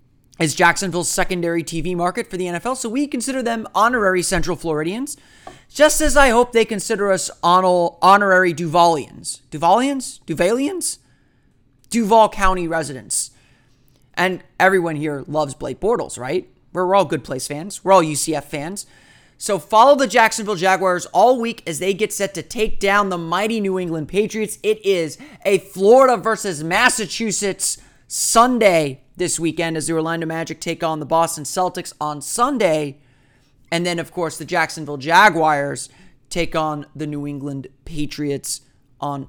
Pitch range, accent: 150-205 Hz, American